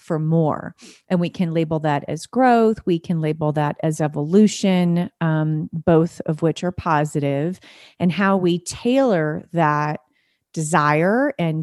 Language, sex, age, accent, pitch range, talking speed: English, female, 30-49, American, 155-195 Hz, 145 wpm